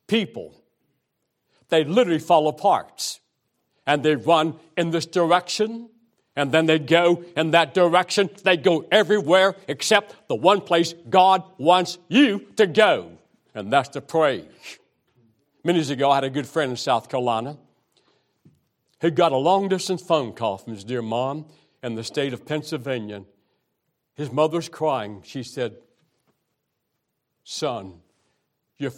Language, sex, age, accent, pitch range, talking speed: English, male, 60-79, American, 130-175 Hz, 140 wpm